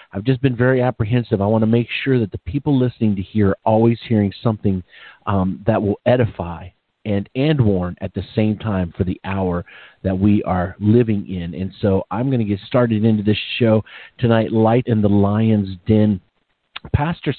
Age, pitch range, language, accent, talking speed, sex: 40-59, 105-145 Hz, English, American, 195 wpm, male